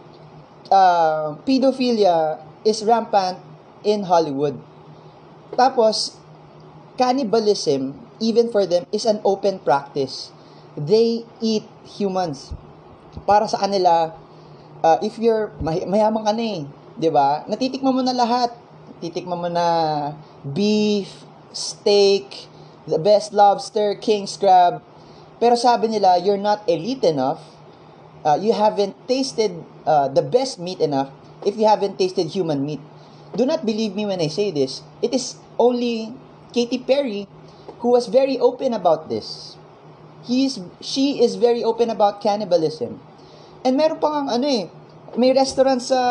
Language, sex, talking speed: Filipino, male, 130 wpm